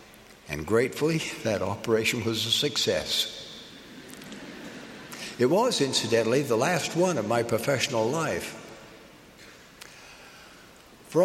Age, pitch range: 60-79, 115-155 Hz